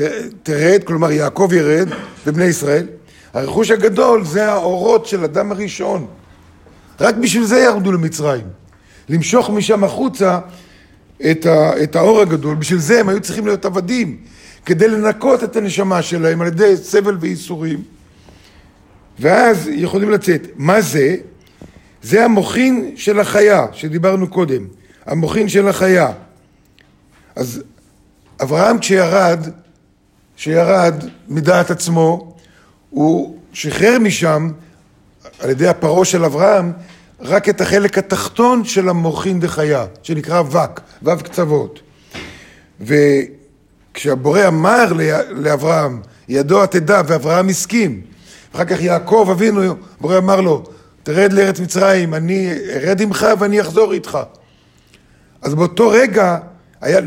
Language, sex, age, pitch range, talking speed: Hebrew, male, 50-69, 155-205 Hz, 110 wpm